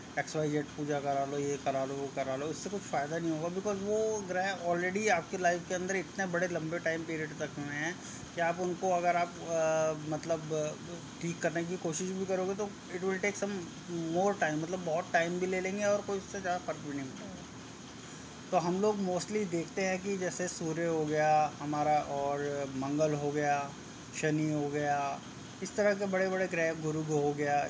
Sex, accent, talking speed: male, native, 205 wpm